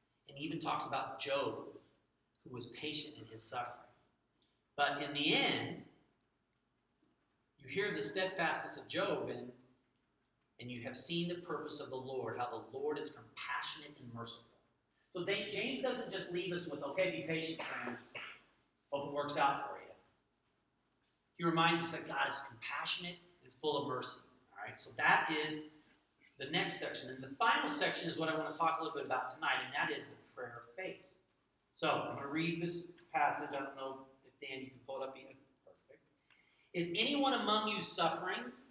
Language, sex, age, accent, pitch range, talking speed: English, male, 40-59, American, 135-195 Hz, 190 wpm